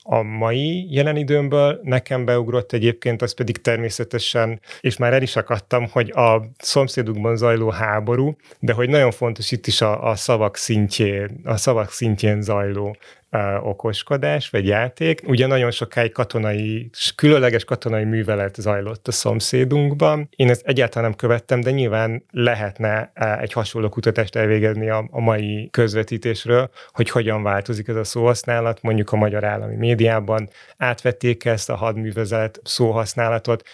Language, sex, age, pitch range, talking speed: Hungarian, male, 30-49, 110-120 Hz, 140 wpm